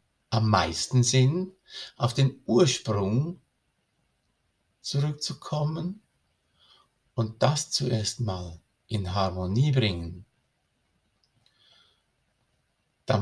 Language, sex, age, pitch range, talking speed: German, male, 60-79, 95-125 Hz, 70 wpm